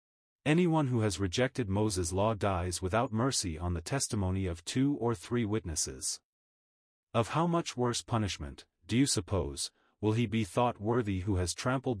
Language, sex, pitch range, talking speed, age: English, male, 95-125 Hz, 165 wpm, 30-49